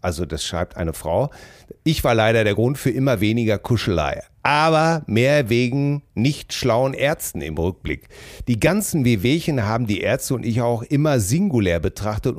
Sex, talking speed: male, 165 wpm